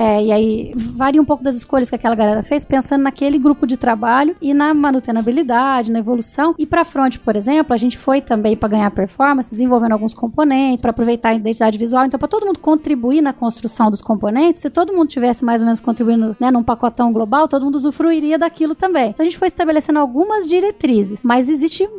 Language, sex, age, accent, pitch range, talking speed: Portuguese, female, 10-29, Brazilian, 225-280 Hz, 210 wpm